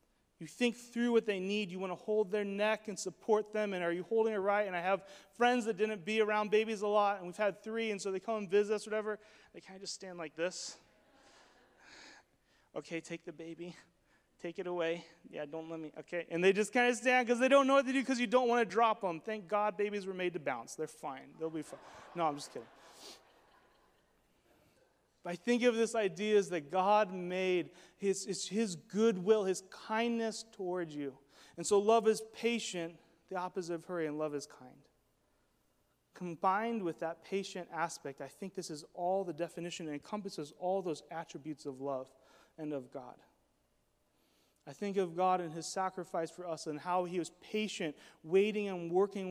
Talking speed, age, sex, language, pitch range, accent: 205 wpm, 30-49, male, English, 170-215 Hz, American